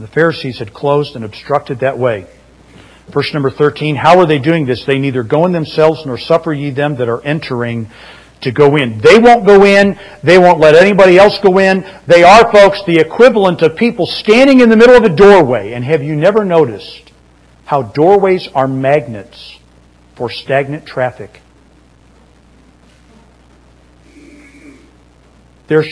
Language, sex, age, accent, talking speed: English, male, 50-69, American, 160 wpm